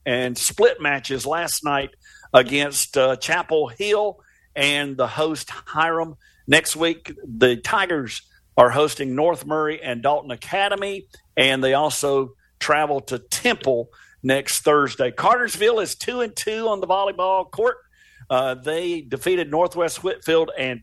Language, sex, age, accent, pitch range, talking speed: English, male, 50-69, American, 135-180 Hz, 135 wpm